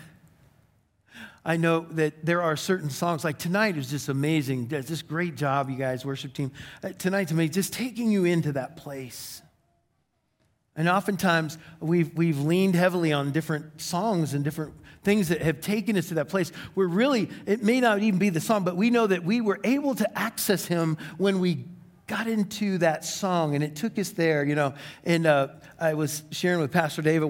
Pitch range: 140-180 Hz